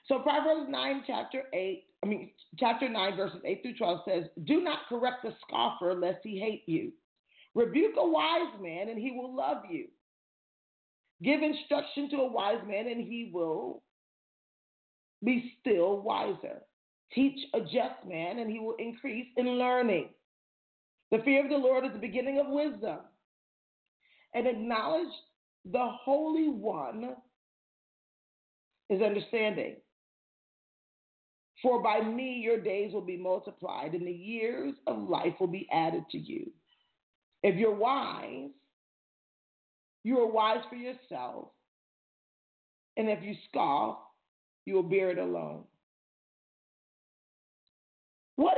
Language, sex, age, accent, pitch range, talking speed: English, female, 40-59, American, 205-280 Hz, 130 wpm